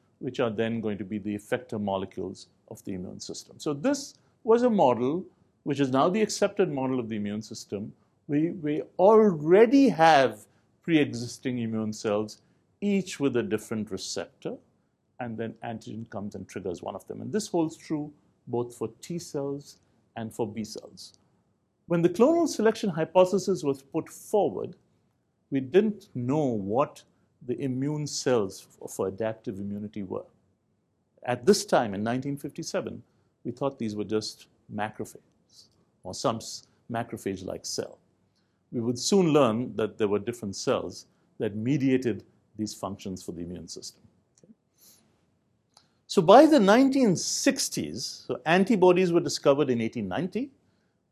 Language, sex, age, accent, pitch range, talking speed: English, male, 60-79, Indian, 110-170 Hz, 145 wpm